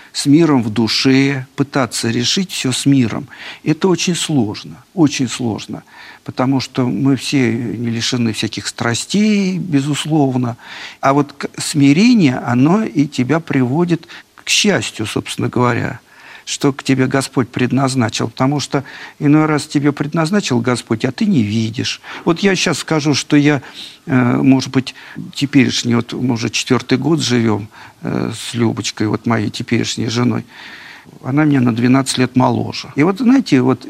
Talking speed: 145 wpm